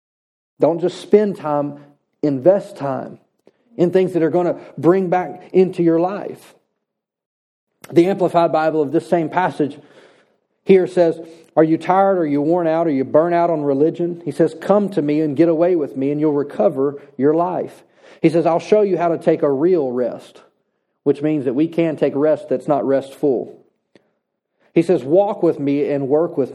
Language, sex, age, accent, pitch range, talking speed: English, male, 40-59, American, 140-175 Hz, 190 wpm